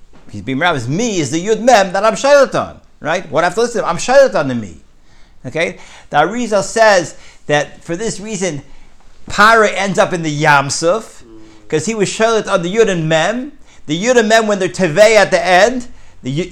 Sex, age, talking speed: male, 50-69, 205 wpm